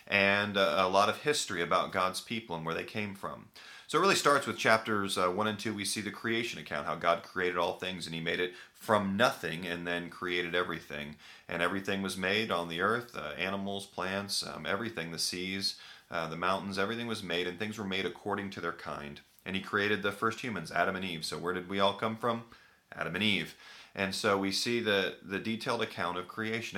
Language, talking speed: English, 220 wpm